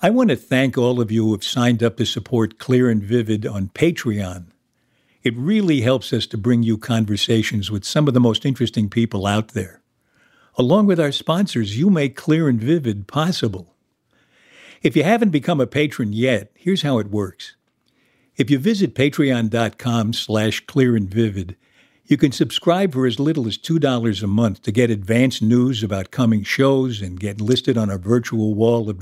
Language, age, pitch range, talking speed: English, 60-79, 110-135 Hz, 180 wpm